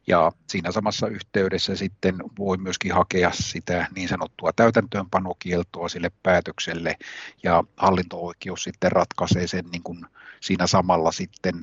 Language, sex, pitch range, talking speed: Finnish, male, 85-100 Hz, 120 wpm